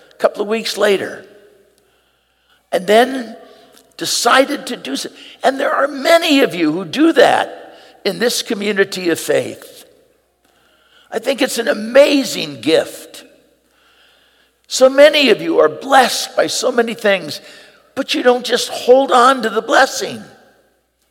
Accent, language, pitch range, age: American, English, 235-340 Hz, 60-79